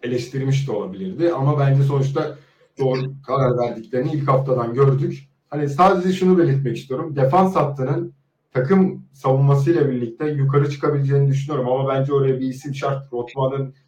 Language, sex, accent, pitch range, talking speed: Turkish, male, native, 130-150 Hz, 140 wpm